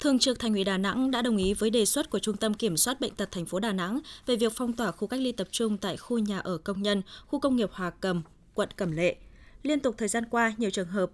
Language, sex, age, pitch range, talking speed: Vietnamese, female, 20-39, 195-240 Hz, 290 wpm